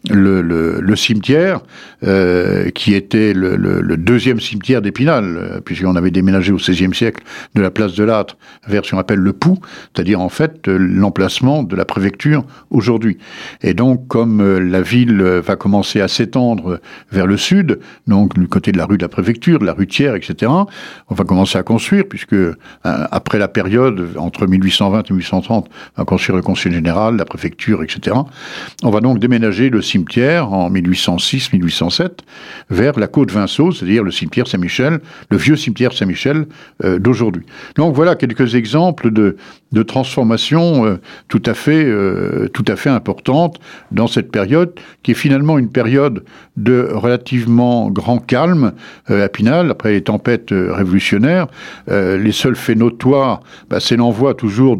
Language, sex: French, male